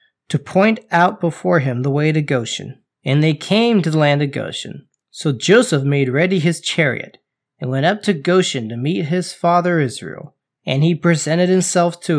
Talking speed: 185 wpm